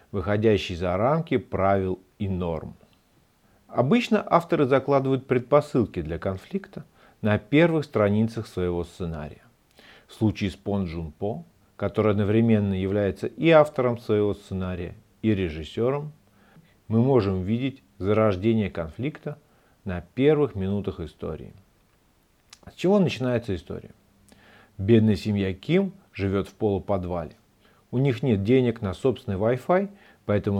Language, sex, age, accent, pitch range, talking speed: Russian, male, 40-59, native, 95-125 Hz, 115 wpm